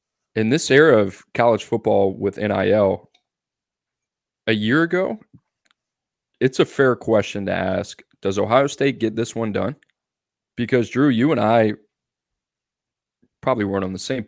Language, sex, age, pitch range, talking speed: English, male, 20-39, 95-120 Hz, 145 wpm